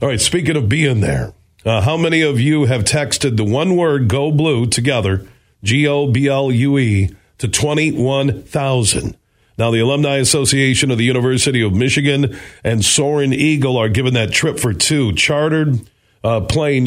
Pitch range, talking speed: 110-145 Hz, 155 wpm